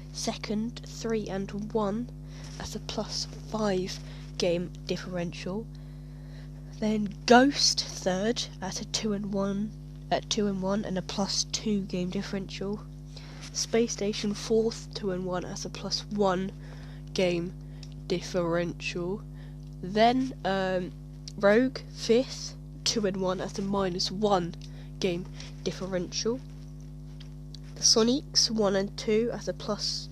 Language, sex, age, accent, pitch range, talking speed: English, female, 10-29, British, 145-200 Hz, 115 wpm